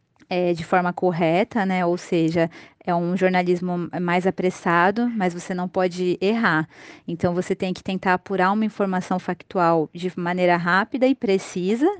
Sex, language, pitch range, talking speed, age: female, Portuguese, 180-210 Hz, 150 wpm, 20-39